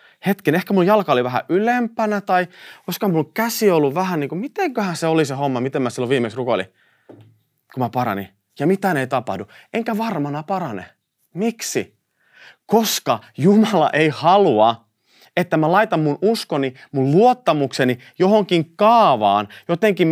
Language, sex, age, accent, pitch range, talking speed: Finnish, male, 30-49, native, 120-180 Hz, 150 wpm